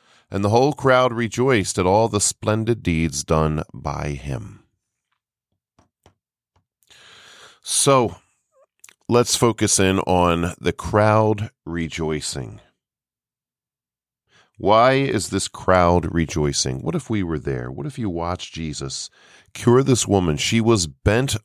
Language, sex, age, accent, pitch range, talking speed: English, male, 40-59, American, 85-110 Hz, 120 wpm